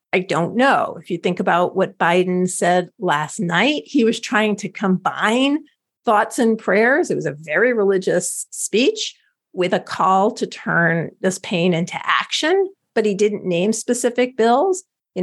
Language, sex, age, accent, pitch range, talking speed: English, female, 50-69, American, 175-230 Hz, 165 wpm